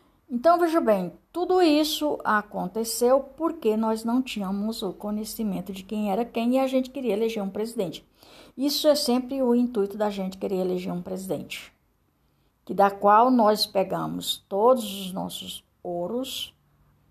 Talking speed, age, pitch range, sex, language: 145 wpm, 60-79, 190-285 Hz, female, Portuguese